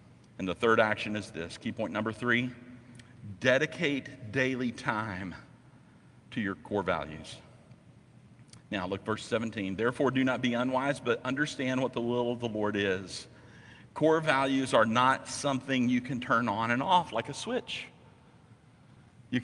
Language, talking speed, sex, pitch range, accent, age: English, 155 wpm, male, 115-155 Hz, American, 50-69